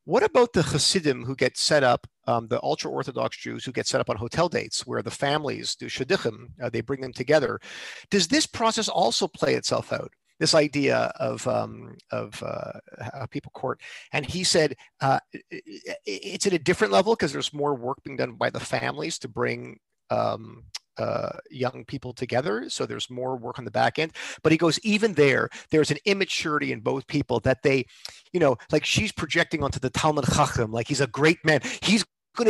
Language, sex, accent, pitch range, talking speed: English, male, American, 135-190 Hz, 195 wpm